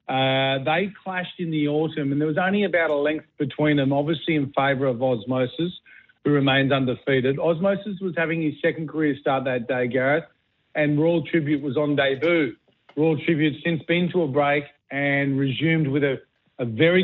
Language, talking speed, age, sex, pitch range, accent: English, 185 wpm, 50-69, male, 135-155 Hz, Australian